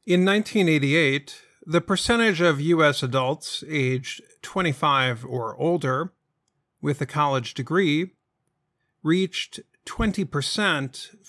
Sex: male